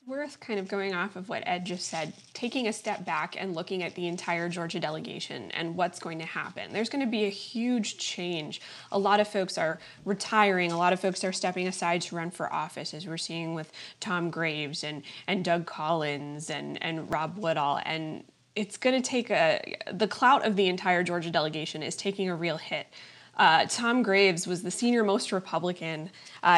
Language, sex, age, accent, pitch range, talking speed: English, female, 20-39, American, 175-215 Hz, 205 wpm